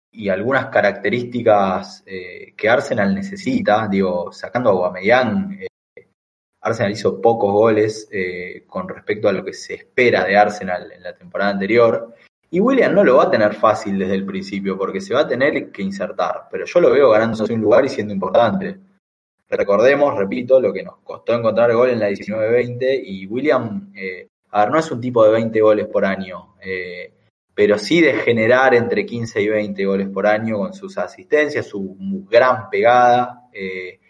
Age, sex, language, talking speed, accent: 20-39, male, Spanish, 180 wpm, Argentinian